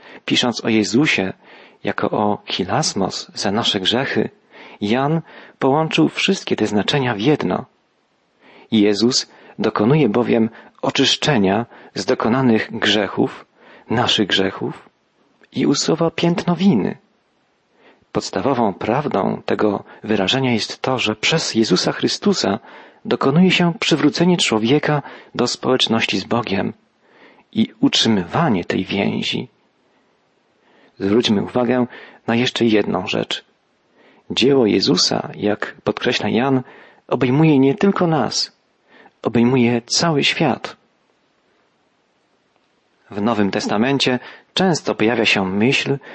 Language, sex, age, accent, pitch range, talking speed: Polish, male, 40-59, native, 115-150 Hz, 100 wpm